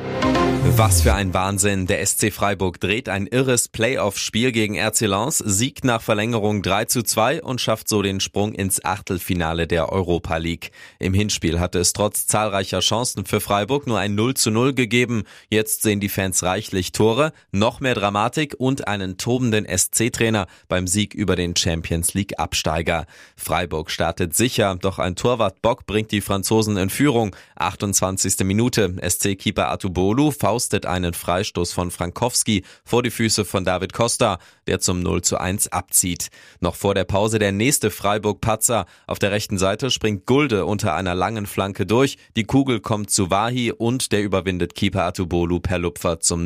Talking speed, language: 165 wpm, German